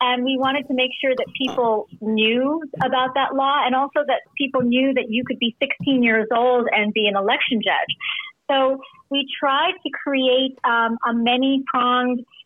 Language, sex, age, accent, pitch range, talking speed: English, female, 40-59, American, 225-270 Hz, 180 wpm